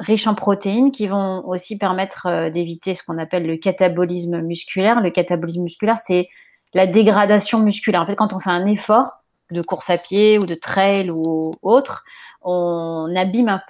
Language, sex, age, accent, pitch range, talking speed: French, female, 30-49, French, 160-195 Hz, 170 wpm